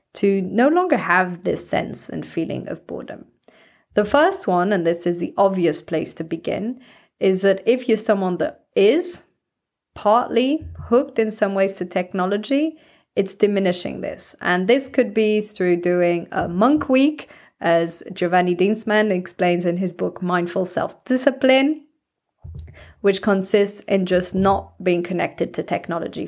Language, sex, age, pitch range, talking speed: English, female, 20-39, 185-240 Hz, 150 wpm